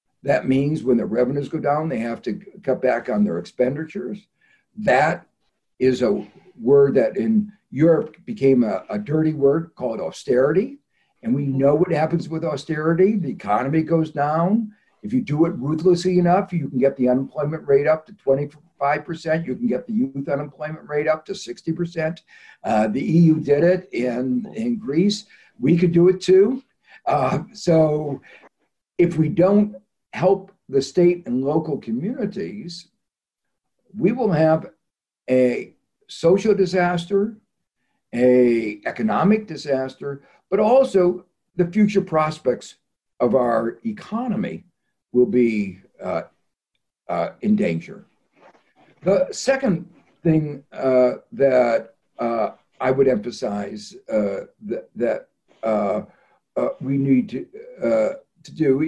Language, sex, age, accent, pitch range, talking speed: English, male, 60-79, American, 140-200 Hz, 135 wpm